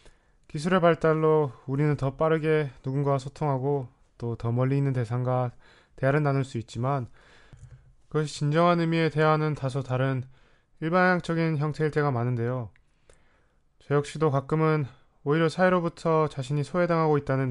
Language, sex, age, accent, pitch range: Korean, male, 20-39, native, 130-155 Hz